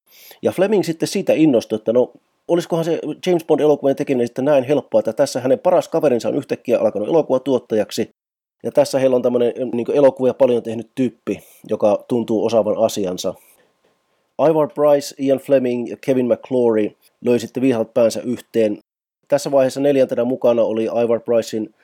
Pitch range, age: 115-140 Hz, 30-49